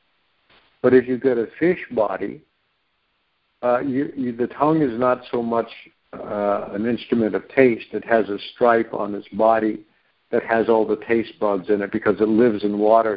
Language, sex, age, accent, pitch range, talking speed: English, male, 60-79, American, 105-120 Hz, 185 wpm